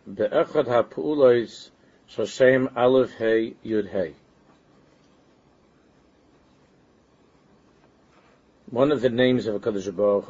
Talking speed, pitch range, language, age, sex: 65 wpm, 105-130 Hz, English, 60-79, male